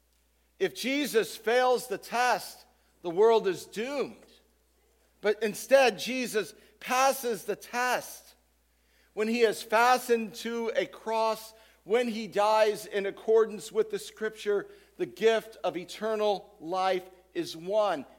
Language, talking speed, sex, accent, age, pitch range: English, 120 wpm, male, American, 50-69, 135-220 Hz